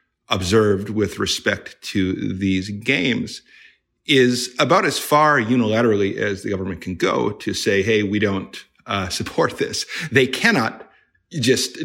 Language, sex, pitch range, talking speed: English, male, 100-130 Hz, 135 wpm